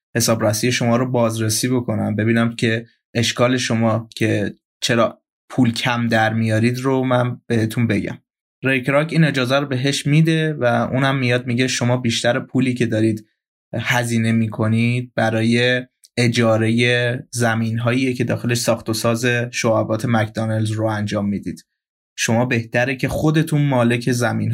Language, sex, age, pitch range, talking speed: Persian, male, 20-39, 110-130 Hz, 135 wpm